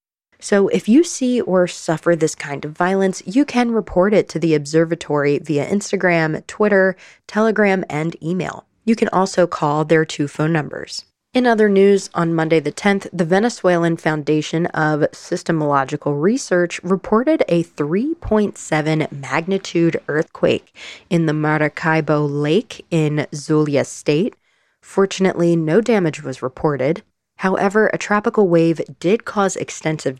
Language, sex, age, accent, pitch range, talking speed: English, female, 20-39, American, 150-190 Hz, 135 wpm